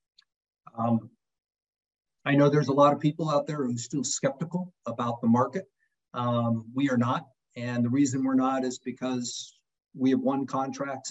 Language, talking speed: English, 175 wpm